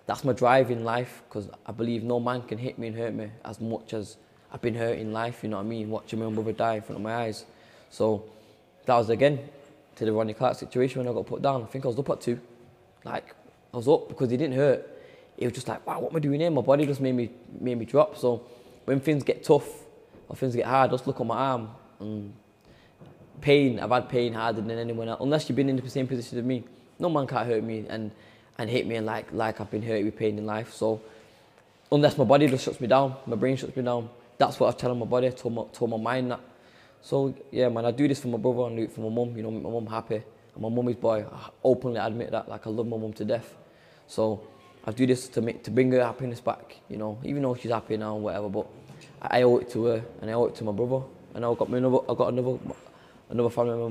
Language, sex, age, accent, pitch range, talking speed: English, male, 20-39, British, 110-130 Hz, 270 wpm